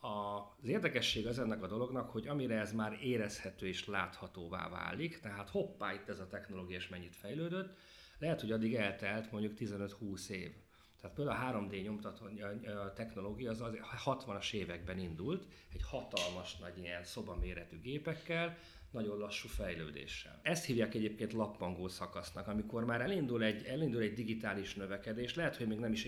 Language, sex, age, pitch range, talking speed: Hungarian, male, 40-59, 95-115 Hz, 150 wpm